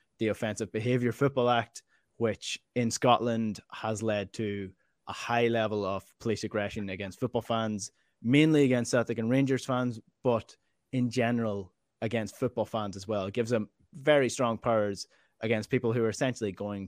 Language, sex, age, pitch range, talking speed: English, male, 20-39, 105-125 Hz, 165 wpm